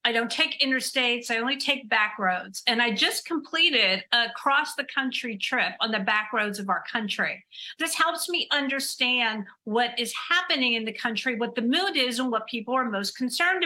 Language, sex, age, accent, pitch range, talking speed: English, female, 50-69, American, 225-280 Hz, 200 wpm